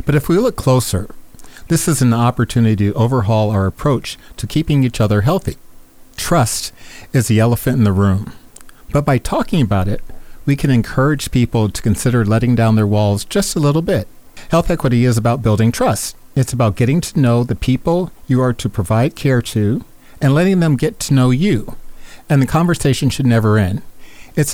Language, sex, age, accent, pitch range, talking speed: English, male, 50-69, American, 110-135 Hz, 190 wpm